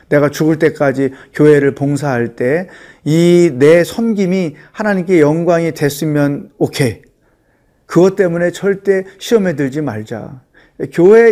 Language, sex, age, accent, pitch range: Korean, male, 40-59, native, 145-200 Hz